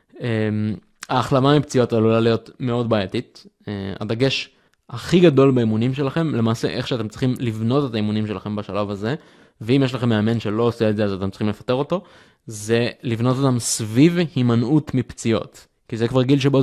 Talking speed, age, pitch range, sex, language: 170 wpm, 20-39, 110-140 Hz, male, Hebrew